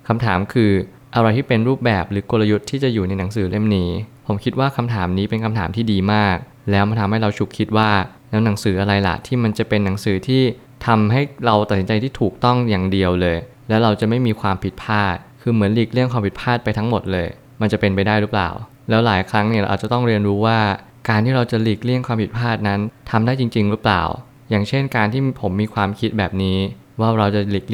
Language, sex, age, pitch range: Thai, male, 20-39, 100-125 Hz